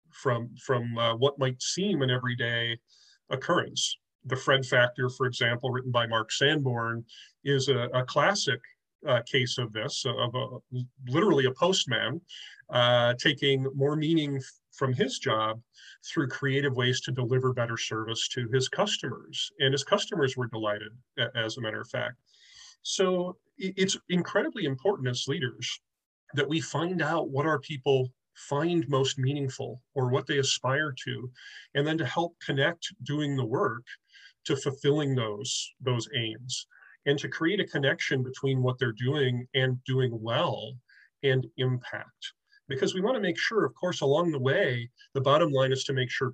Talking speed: 160 wpm